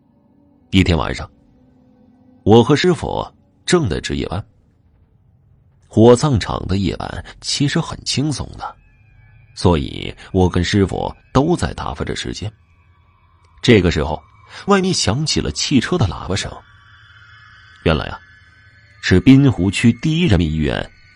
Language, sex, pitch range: Chinese, male, 90-120 Hz